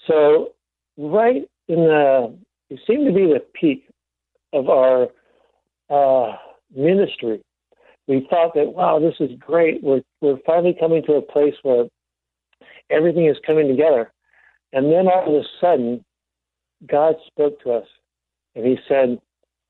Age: 60-79